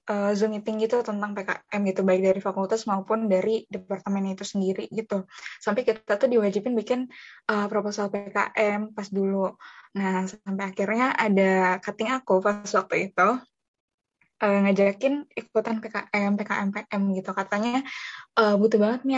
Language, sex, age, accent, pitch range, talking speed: Indonesian, female, 10-29, native, 195-225 Hz, 145 wpm